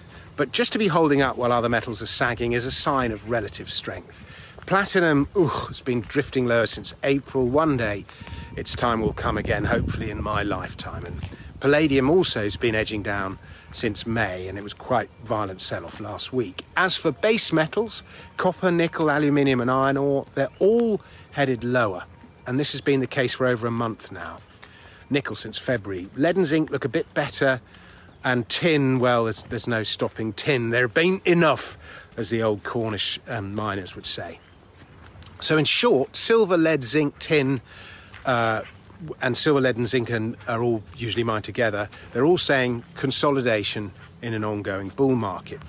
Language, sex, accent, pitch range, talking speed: English, male, British, 105-140 Hz, 175 wpm